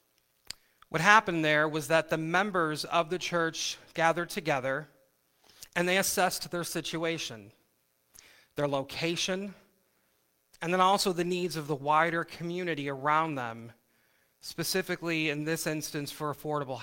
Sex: male